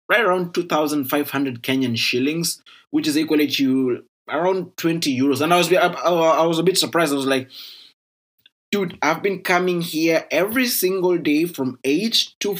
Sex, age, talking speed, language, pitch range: male, 20-39, 155 wpm, English, 140-185 Hz